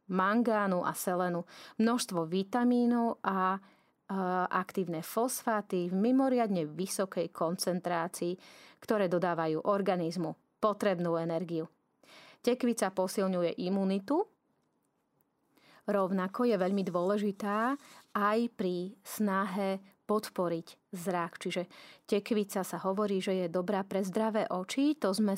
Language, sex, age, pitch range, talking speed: Slovak, female, 30-49, 175-220 Hz, 100 wpm